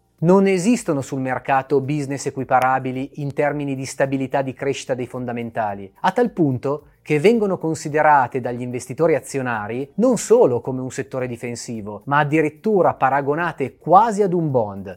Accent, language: native, Italian